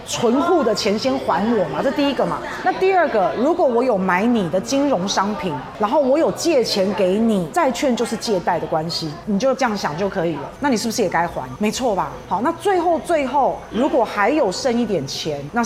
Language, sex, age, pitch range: Chinese, female, 30-49, 190-255 Hz